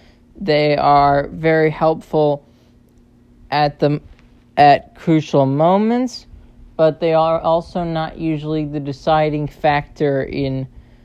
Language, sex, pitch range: English, male, 130-155 Hz